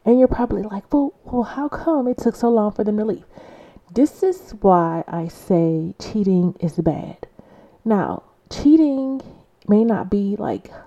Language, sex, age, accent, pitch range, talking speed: English, female, 30-49, American, 170-230 Hz, 165 wpm